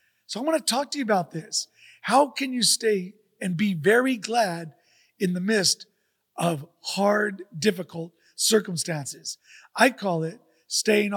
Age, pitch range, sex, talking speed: 40-59, 175-225 Hz, male, 150 wpm